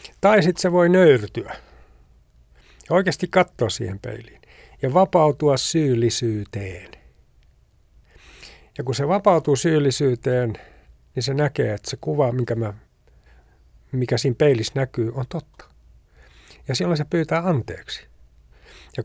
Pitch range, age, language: 105-140 Hz, 60-79, Finnish